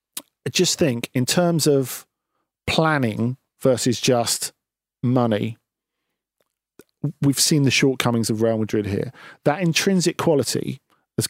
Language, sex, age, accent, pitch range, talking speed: English, male, 40-59, British, 120-165 Hz, 115 wpm